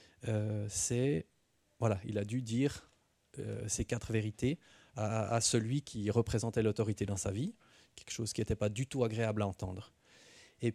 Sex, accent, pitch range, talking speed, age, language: male, French, 110-140 Hz, 175 wpm, 40-59, French